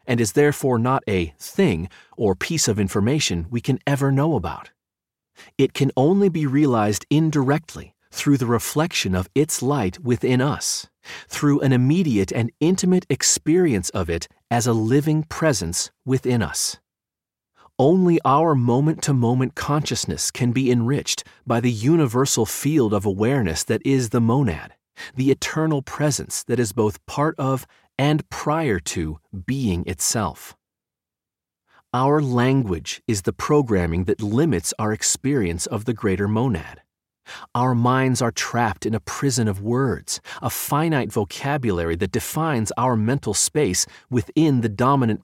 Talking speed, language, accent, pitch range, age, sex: 140 wpm, English, American, 105-145 Hz, 40-59, male